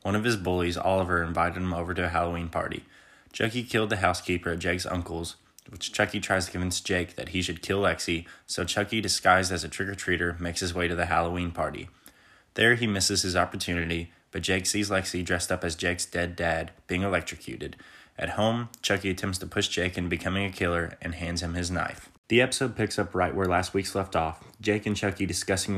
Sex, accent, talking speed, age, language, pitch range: male, American, 210 wpm, 20-39, English, 85-100 Hz